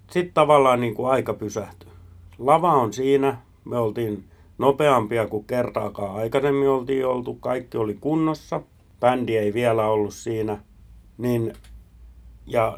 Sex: male